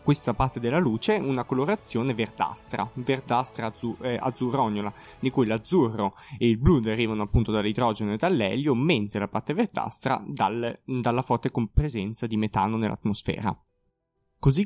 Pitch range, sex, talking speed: 110-135 Hz, male, 140 wpm